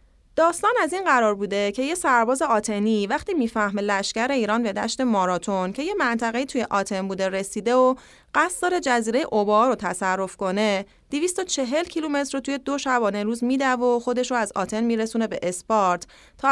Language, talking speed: English, 165 wpm